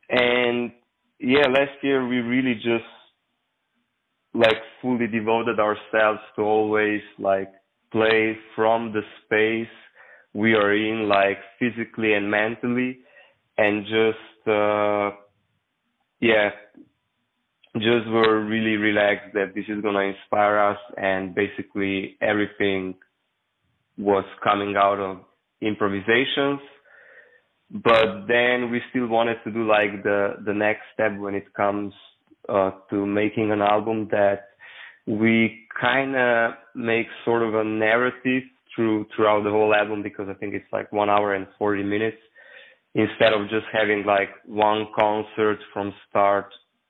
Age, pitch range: 20-39, 100-115 Hz